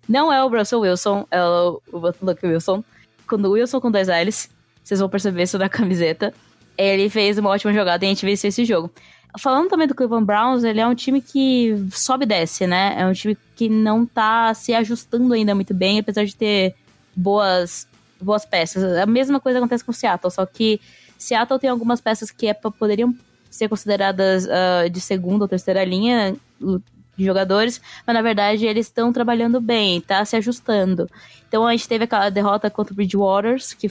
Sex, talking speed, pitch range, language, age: female, 190 wpm, 185-225 Hz, Portuguese, 10-29